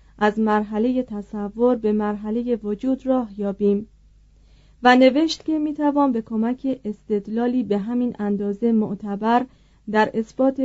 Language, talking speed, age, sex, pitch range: Persian, 125 wpm, 40-59, female, 210-255 Hz